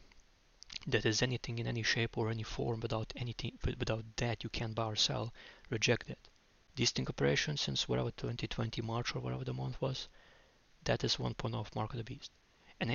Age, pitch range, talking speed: 20-39, 110-125 Hz, 190 wpm